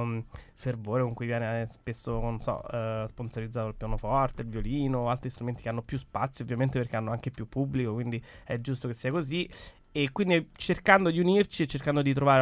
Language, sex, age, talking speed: Italian, male, 20-39, 185 wpm